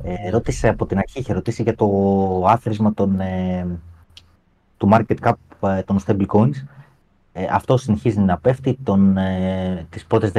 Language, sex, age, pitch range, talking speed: Greek, male, 30-49, 95-125 Hz, 155 wpm